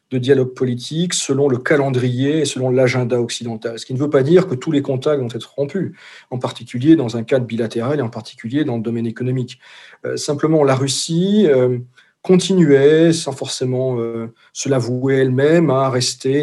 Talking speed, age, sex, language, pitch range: 185 wpm, 40-59, male, French, 120-140 Hz